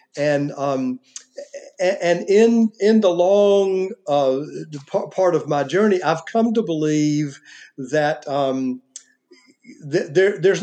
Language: English